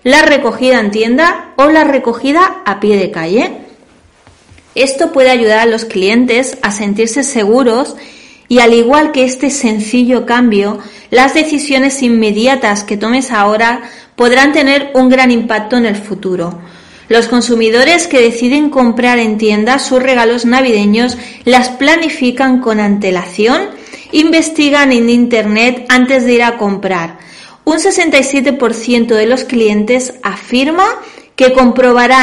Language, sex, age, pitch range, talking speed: Spanish, female, 30-49, 225-275 Hz, 130 wpm